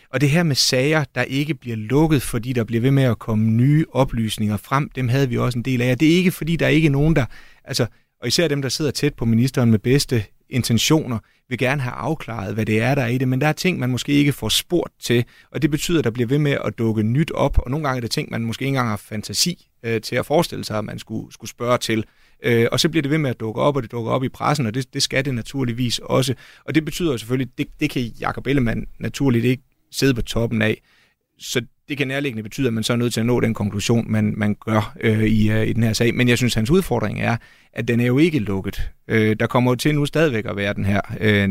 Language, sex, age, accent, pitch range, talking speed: Danish, male, 30-49, native, 110-135 Hz, 275 wpm